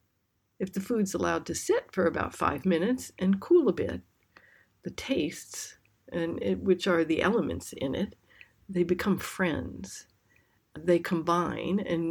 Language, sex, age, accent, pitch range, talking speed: English, female, 60-79, American, 145-205 Hz, 155 wpm